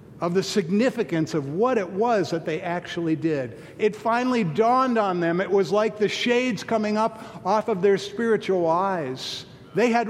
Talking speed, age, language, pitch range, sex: 180 wpm, 50-69, English, 145-210 Hz, male